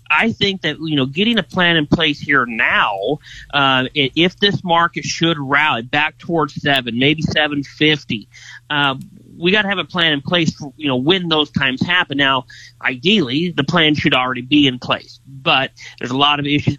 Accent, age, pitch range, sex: American, 30-49, 130-155 Hz, male